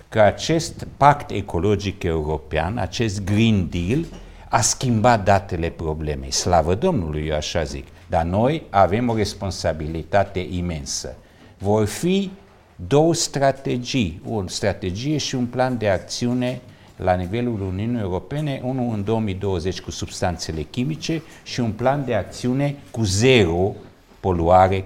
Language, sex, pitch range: Romanian, male, 85-120 Hz